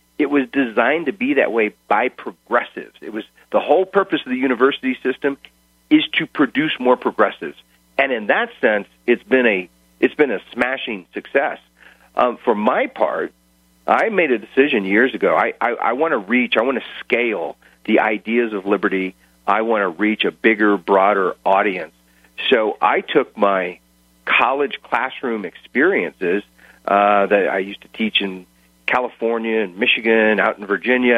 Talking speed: 165 wpm